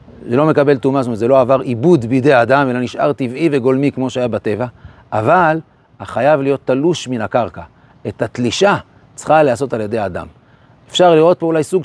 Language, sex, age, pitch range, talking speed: Hebrew, male, 40-59, 125-160 Hz, 185 wpm